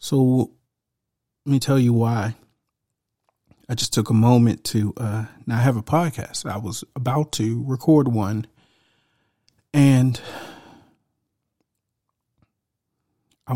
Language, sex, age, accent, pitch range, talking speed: English, male, 40-59, American, 110-130 Hz, 110 wpm